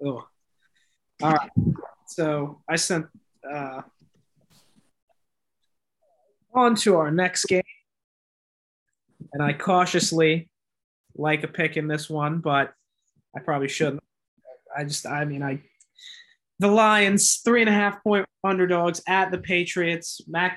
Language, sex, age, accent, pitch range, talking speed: English, male, 20-39, American, 145-190 Hz, 125 wpm